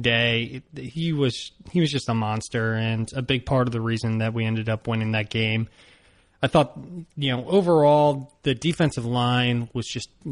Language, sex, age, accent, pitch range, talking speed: English, male, 30-49, American, 115-140 Hz, 185 wpm